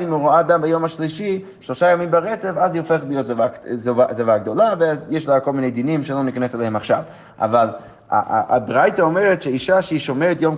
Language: Hebrew